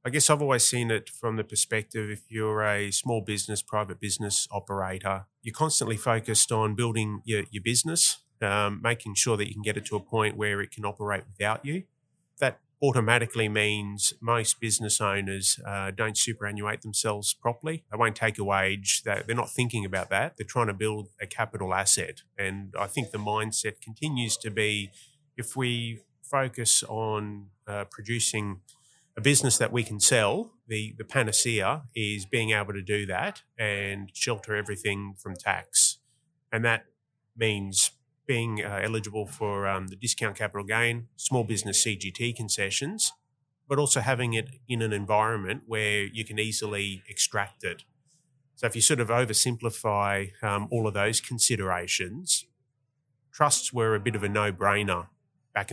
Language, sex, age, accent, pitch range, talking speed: English, male, 30-49, Australian, 105-120 Hz, 165 wpm